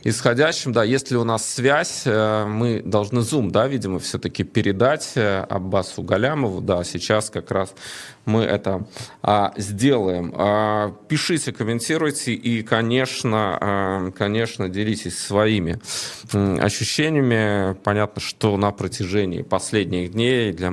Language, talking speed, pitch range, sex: Russian, 105 wpm, 90-115 Hz, male